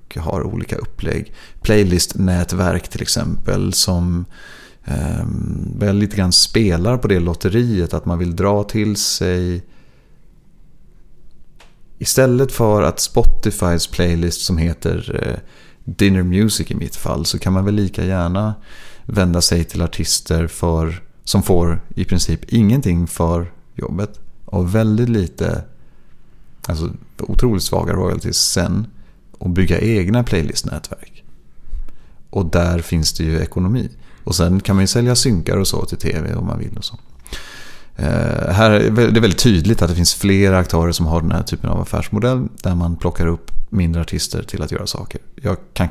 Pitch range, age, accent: 85-105 Hz, 30-49, native